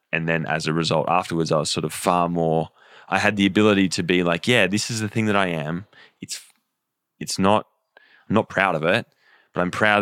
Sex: male